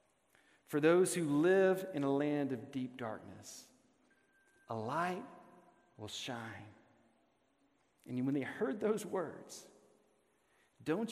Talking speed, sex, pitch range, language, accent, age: 115 wpm, male, 155-210 Hz, English, American, 40-59